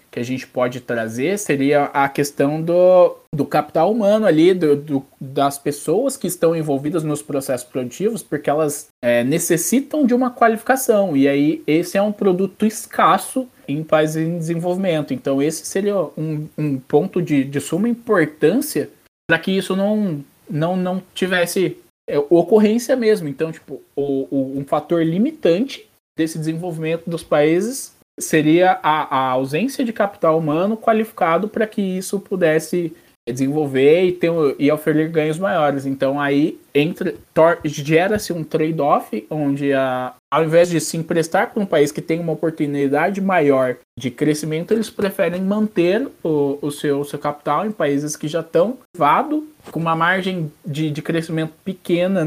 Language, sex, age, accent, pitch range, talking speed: Portuguese, male, 20-39, Brazilian, 145-190 Hz, 150 wpm